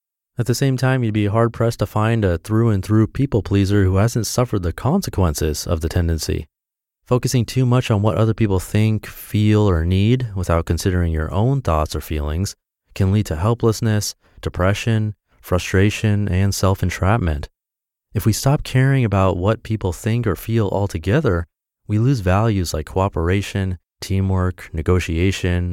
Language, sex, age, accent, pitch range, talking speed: English, male, 30-49, American, 90-120 Hz, 160 wpm